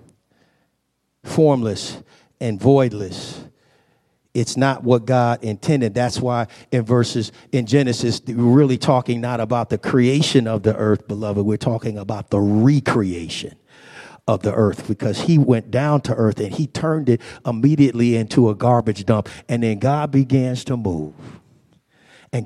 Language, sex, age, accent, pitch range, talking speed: English, male, 50-69, American, 115-140 Hz, 145 wpm